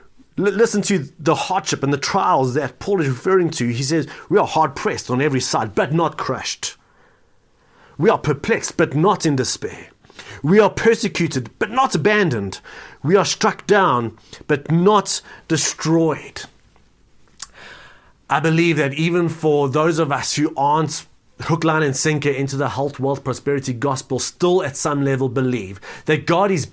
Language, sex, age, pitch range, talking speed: English, male, 30-49, 140-185 Hz, 160 wpm